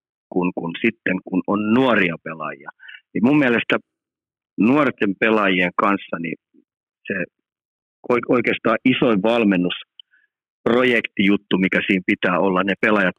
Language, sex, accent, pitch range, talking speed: Finnish, male, native, 90-115 Hz, 110 wpm